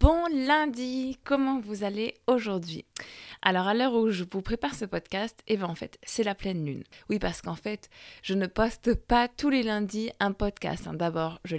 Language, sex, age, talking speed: French, female, 20-39, 200 wpm